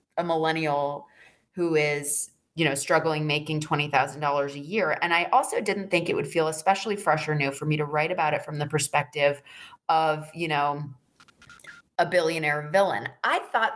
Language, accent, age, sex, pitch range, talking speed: English, American, 30-49, female, 155-210 Hz, 185 wpm